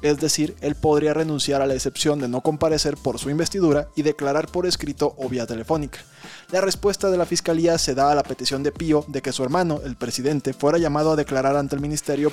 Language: Spanish